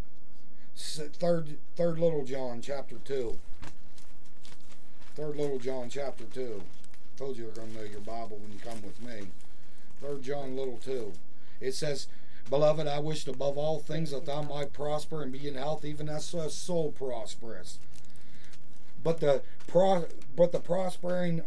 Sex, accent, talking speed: male, American, 160 wpm